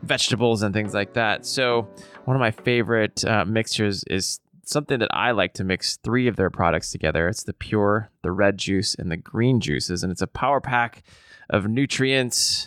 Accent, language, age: American, English, 20-39